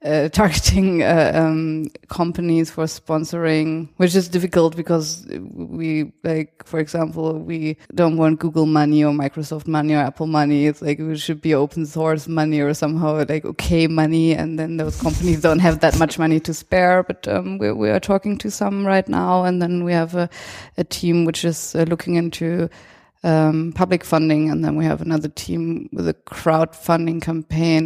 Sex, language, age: female, English, 20-39